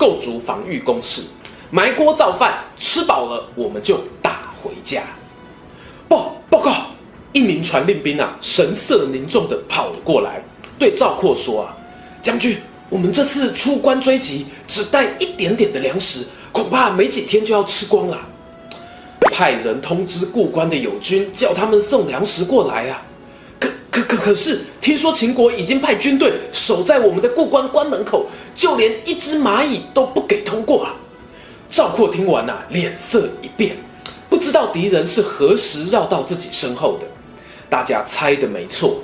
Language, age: Chinese, 20-39